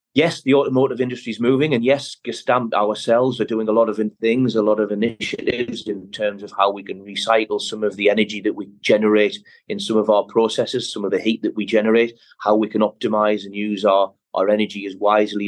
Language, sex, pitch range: English, male, 100-115 Hz